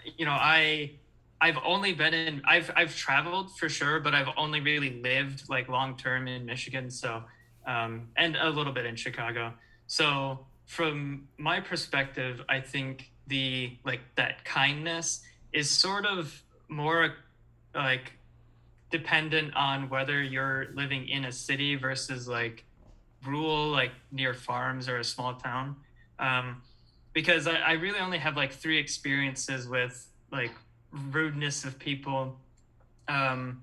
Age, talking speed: 20-39, 140 wpm